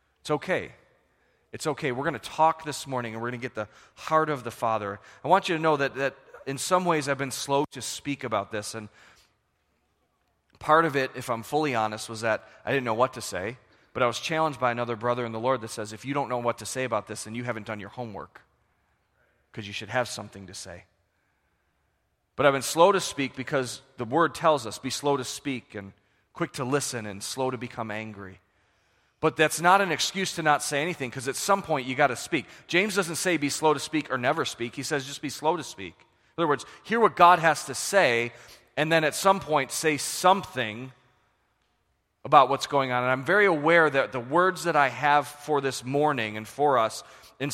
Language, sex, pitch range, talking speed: English, male, 115-150 Hz, 225 wpm